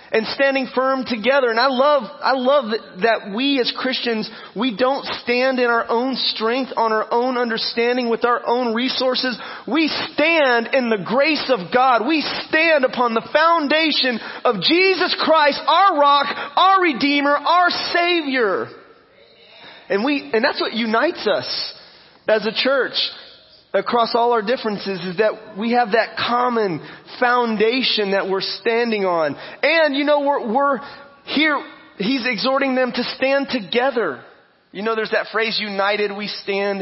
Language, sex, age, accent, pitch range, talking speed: English, male, 30-49, American, 205-280 Hz, 155 wpm